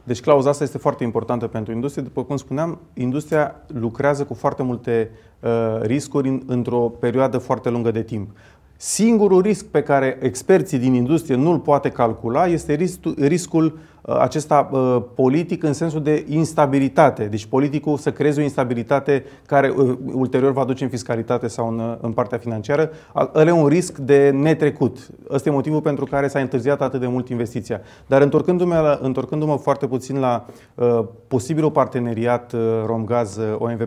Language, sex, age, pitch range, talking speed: Romanian, male, 30-49, 120-150 Hz, 160 wpm